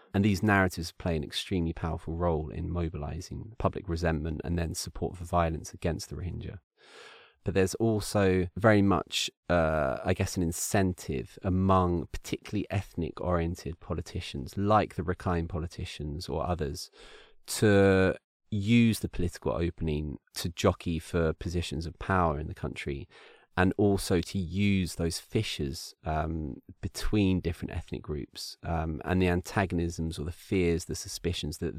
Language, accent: English, British